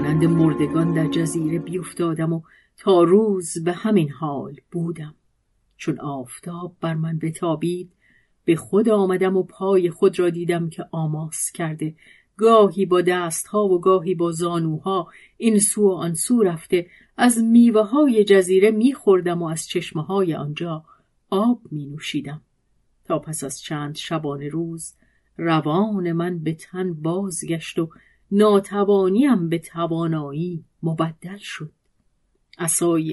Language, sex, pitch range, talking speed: Persian, female, 160-200 Hz, 130 wpm